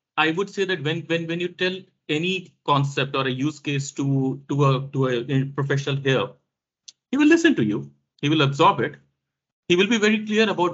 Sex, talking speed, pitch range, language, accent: male, 205 wpm, 135-170 Hz, English, Indian